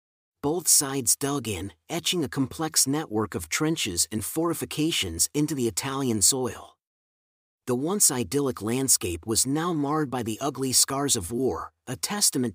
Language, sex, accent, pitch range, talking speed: English, male, American, 110-145 Hz, 150 wpm